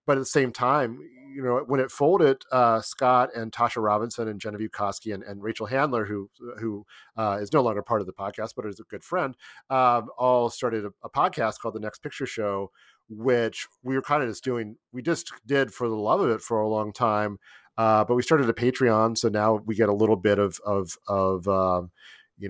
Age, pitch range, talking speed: 40-59, 100-125 Hz, 225 wpm